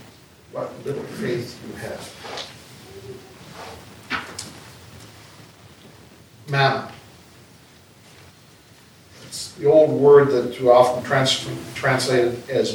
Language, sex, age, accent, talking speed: English, male, 60-79, American, 75 wpm